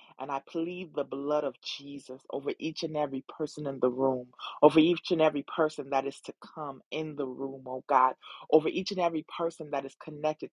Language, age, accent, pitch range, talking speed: English, 30-49, American, 135-165 Hz, 210 wpm